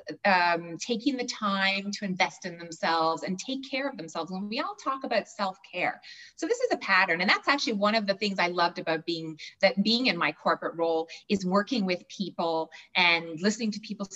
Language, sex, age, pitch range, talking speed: English, female, 30-49, 170-205 Hz, 210 wpm